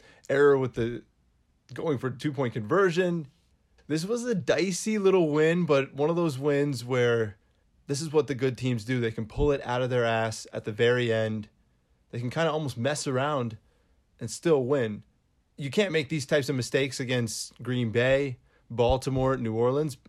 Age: 30-49